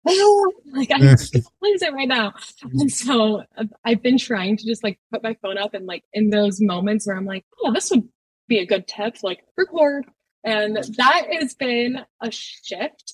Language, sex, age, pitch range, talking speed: English, female, 20-39, 200-240 Hz, 205 wpm